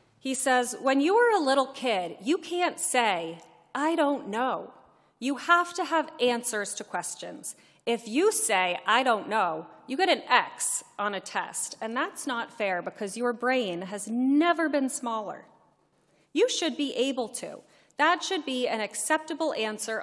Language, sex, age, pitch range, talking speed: English, female, 30-49, 210-290 Hz, 170 wpm